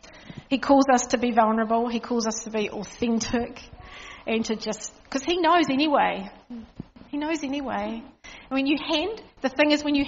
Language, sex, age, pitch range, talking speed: English, female, 40-59, 230-285 Hz, 185 wpm